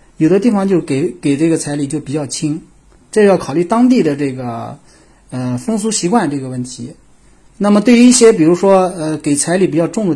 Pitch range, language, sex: 140-190 Hz, Chinese, male